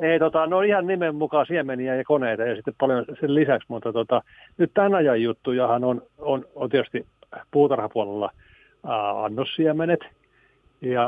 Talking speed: 150 wpm